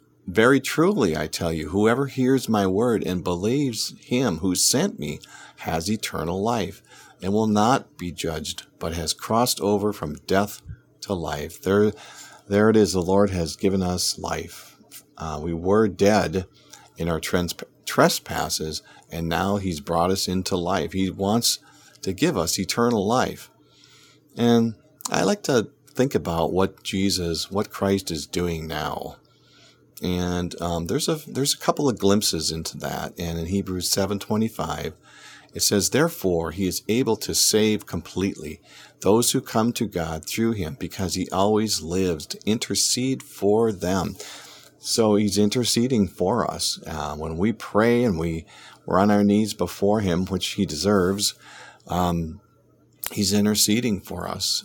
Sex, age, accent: male, 50-69, American